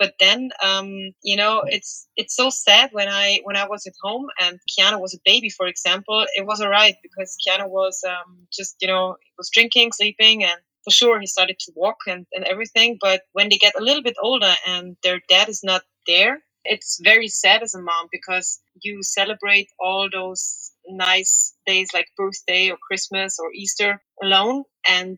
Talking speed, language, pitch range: 200 wpm, English, 180-205 Hz